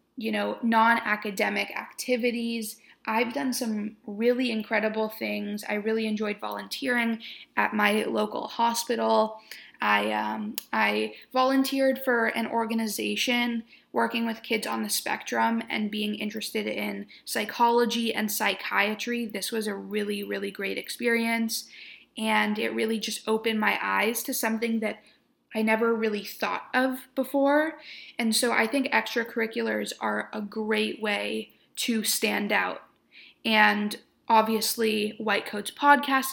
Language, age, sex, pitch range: English, 20-39, female, 210-235 Hz